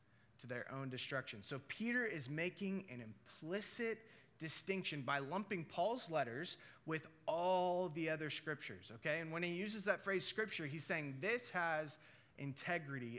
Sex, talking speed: male, 150 wpm